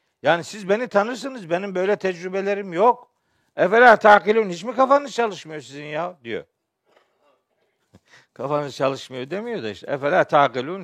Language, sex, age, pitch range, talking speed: Turkish, male, 60-79, 145-230 Hz, 135 wpm